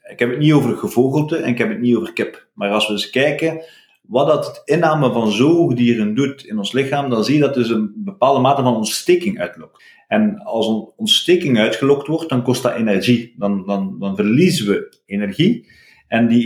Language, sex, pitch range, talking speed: Dutch, male, 115-170 Hz, 205 wpm